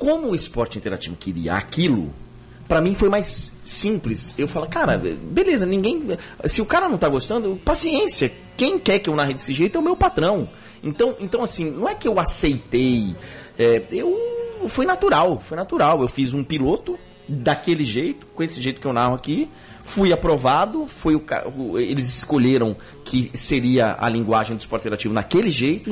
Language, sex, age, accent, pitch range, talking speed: Portuguese, male, 40-59, Brazilian, 115-195 Hz, 175 wpm